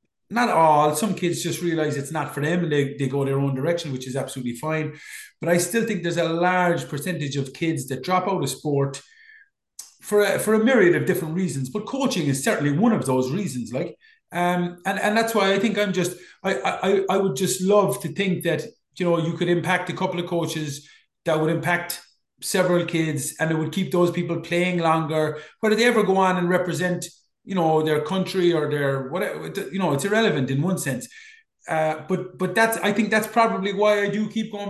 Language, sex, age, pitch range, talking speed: English, male, 30-49, 155-195 Hz, 220 wpm